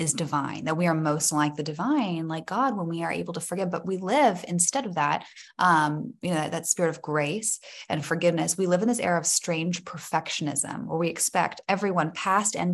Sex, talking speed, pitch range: female, 220 wpm, 160-210 Hz